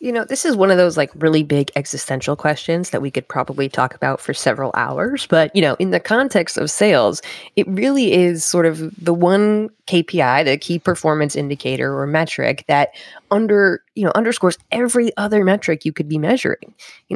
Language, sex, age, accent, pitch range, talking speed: English, female, 20-39, American, 145-185 Hz, 195 wpm